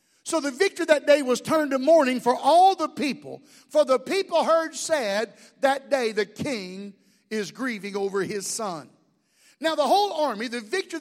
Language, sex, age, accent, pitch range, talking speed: English, male, 50-69, American, 235-320 Hz, 180 wpm